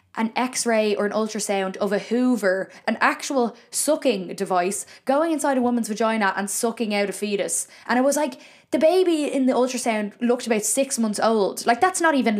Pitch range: 200-250 Hz